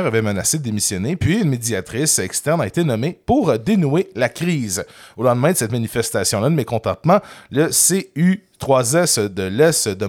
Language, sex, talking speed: French, male, 165 wpm